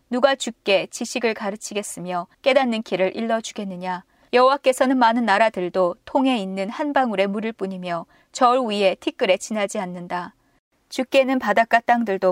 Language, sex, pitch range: Korean, female, 195-255 Hz